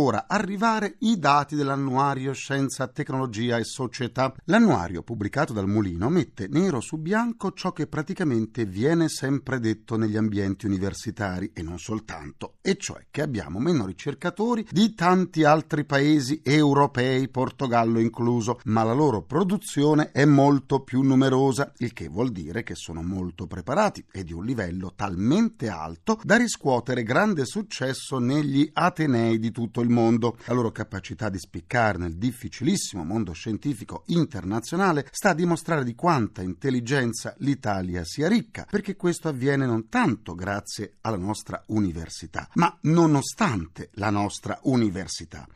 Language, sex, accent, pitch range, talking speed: Italian, male, native, 110-160 Hz, 140 wpm